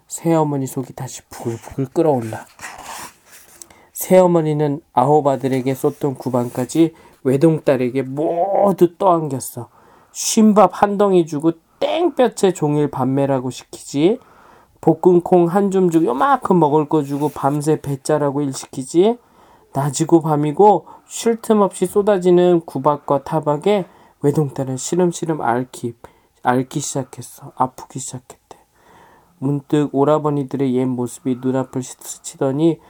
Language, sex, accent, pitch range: Korean, male, native, 135-180 Hz